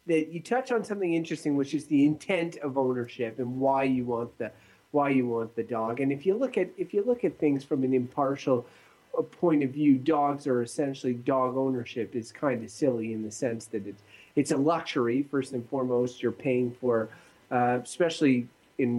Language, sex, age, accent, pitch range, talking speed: English, male, 30-49, American, 125-155 Hz, 200 wpm